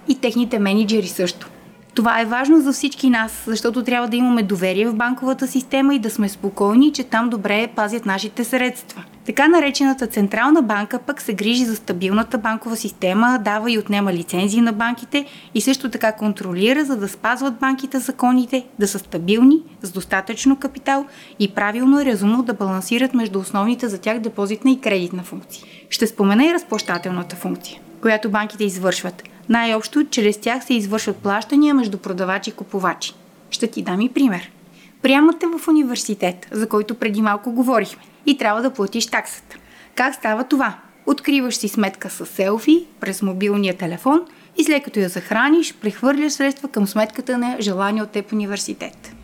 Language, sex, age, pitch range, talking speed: Bulgarian, female, 30-49, 205-260 Hz, 165 wpm